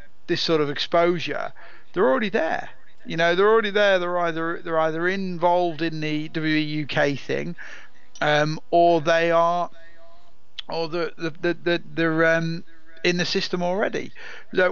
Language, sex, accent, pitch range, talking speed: English, male, British, 140-175 Hz, 150 wpm